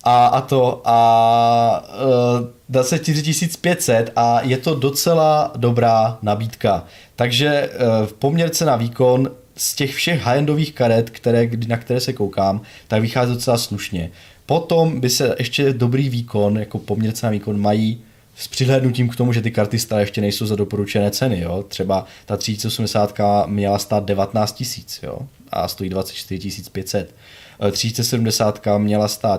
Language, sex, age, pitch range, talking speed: Czech, male, 20-39, 100-120 Hz, 150 wpm